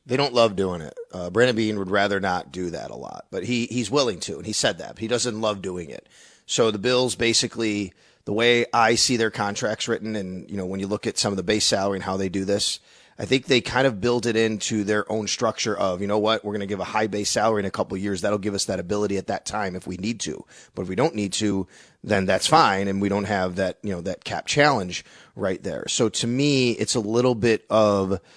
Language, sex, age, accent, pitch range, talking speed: English, male, 30-49, American, 100-120 Hz, 270 wpm